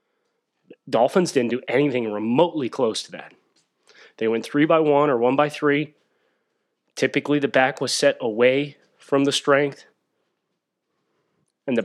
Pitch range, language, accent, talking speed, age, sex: 120-150 Hz, English, American, 140 wpm, 30-49, male